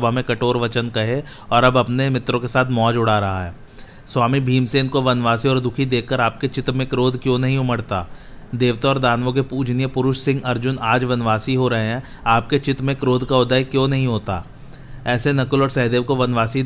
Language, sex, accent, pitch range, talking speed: Hindi, male, native, 120-135 Hz, 70 wpm